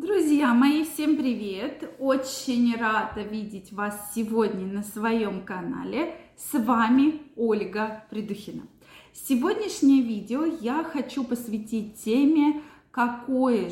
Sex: female